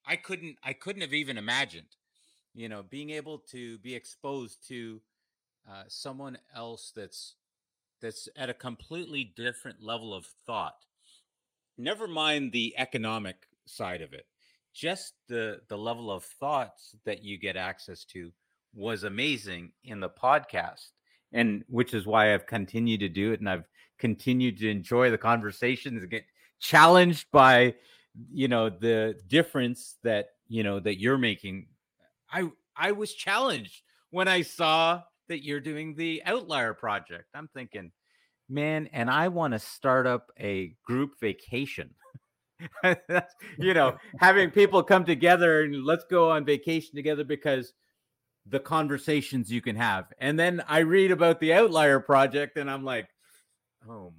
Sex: male